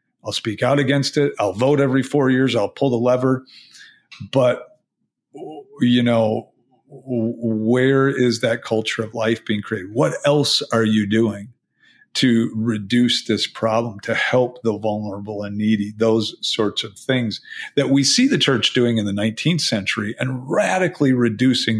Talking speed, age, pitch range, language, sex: 155 wpm, 50-69, 110-130 Hz, English, male